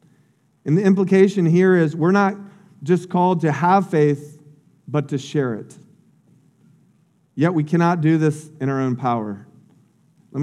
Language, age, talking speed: English, 40-59, 150 wpm